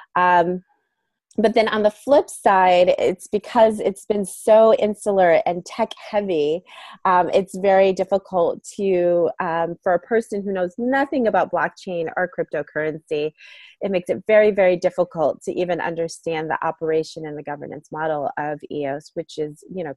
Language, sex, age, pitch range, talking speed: English, female, 30-49, 165-205 Hz, 160 wpm